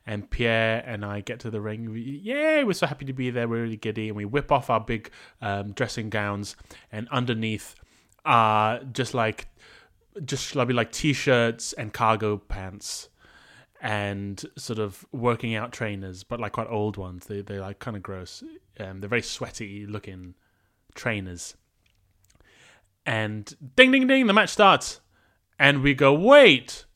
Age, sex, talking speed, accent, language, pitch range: 30-49, male, 160 wpm, British, English, 105-160 Hz